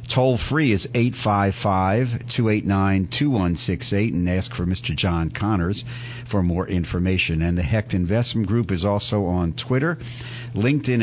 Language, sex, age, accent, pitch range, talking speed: English, male, 50-69, American, 95-120 Hz, 125 wpm